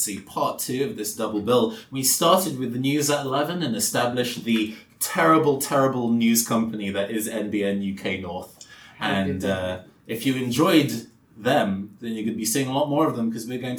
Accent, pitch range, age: British, 100-150 Hz, 20-39